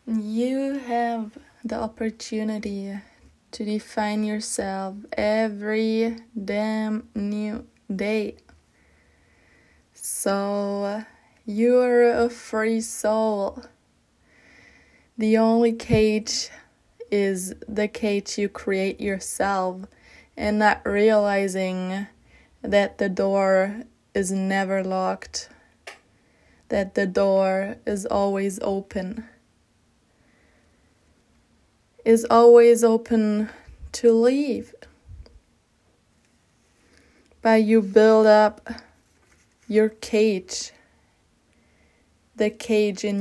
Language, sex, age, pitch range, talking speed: English, female, 20-39, 195-225 Hz, 75 wpm